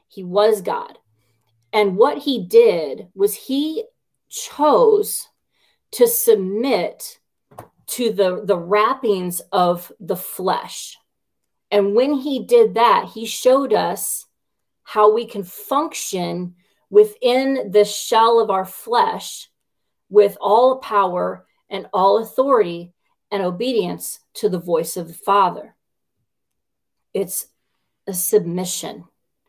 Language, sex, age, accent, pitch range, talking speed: English, female, 40-59, American, 185-255 Hz, 110 wpm